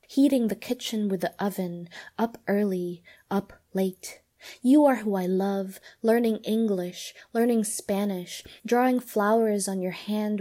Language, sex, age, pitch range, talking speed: English, female, 20-39, 190-230 Hz, 140 wpm